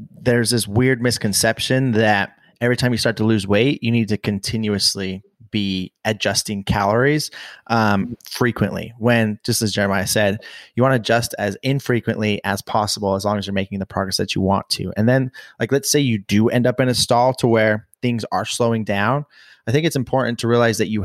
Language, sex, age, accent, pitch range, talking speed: English, male, 30-49, American, 105-125 Hz, 200 wpm